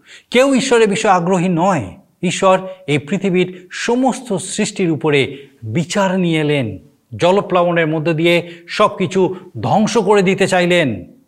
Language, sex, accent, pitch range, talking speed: Bengali, male, native, 150-200 Hz, 120 wpm